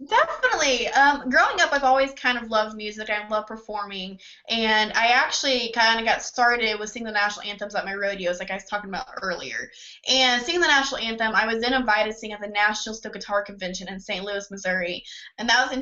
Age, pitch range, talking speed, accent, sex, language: 20-39, 205-260 Hz, 225 wpm, American, female, English